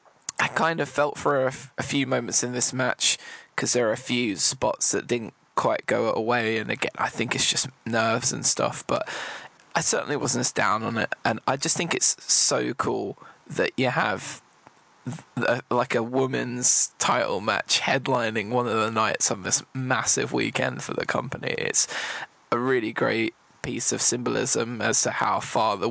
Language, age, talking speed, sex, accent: English, 20-39, 190 wpm, male, British